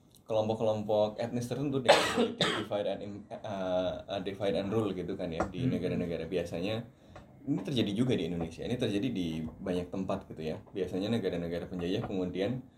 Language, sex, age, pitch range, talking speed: Indonesian, male, 20-39, 95-120 Hz, 145 wpm